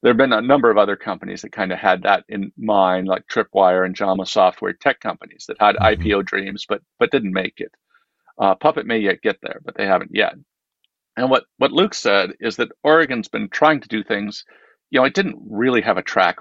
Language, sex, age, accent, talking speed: English, male, 50-69, American, 225 wpm